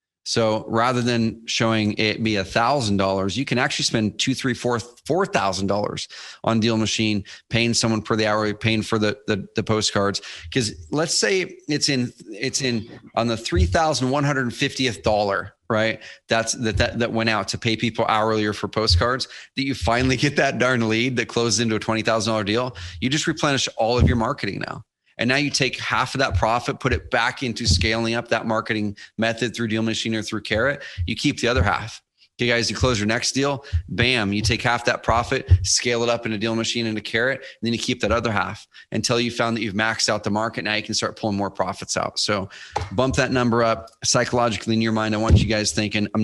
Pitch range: 105-120 Hz